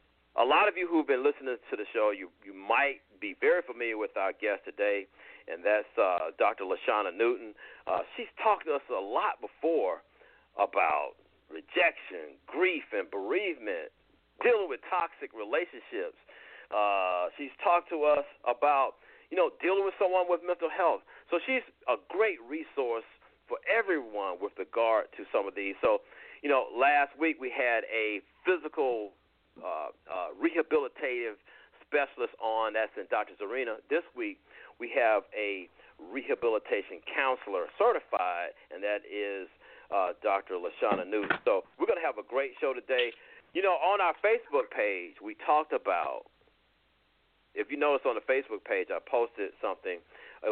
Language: English